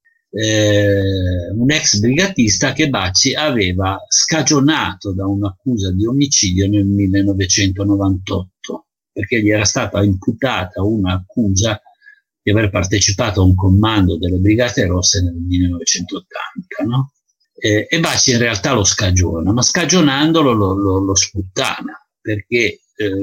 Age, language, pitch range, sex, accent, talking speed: 50-69, Italian, 100-145 Hz, male, native, 120 wpm